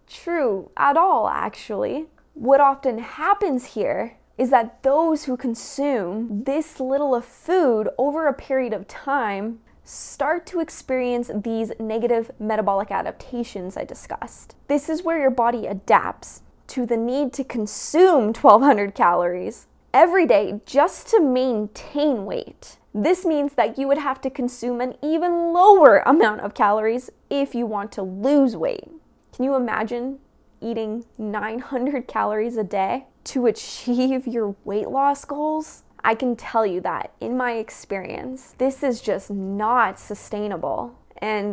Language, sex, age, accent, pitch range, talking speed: English, female, 20-39, American, 210-275 Hz, 140 wpm